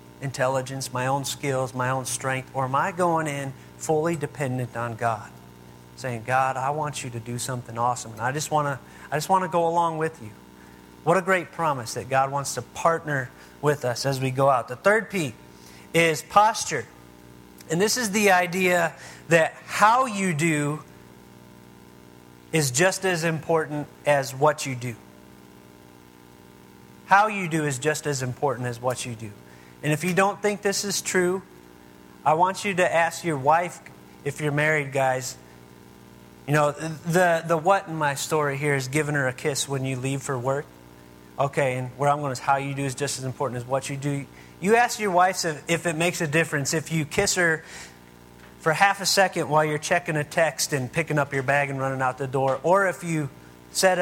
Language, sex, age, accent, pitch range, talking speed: English, male, 40-59, American, 115-165 Hz, 190 wpm